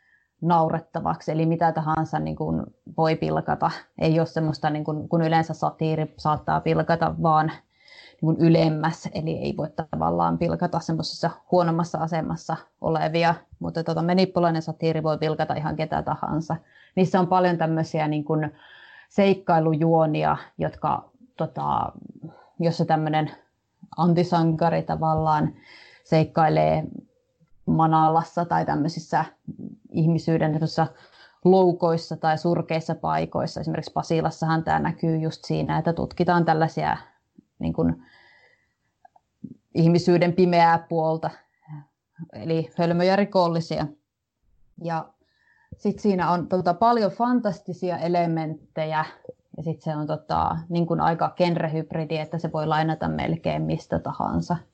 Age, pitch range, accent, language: 30-49, 155-170 Hz, native, Finnish